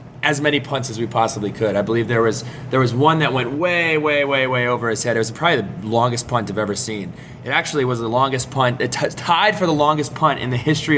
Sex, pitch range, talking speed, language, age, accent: male, 120-145 Hz, 260 wpm, English, 20-39, American